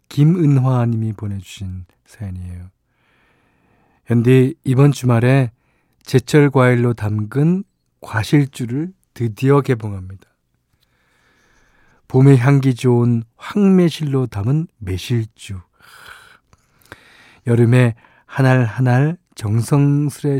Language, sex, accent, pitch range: Korean, male, native, 115-150 Hz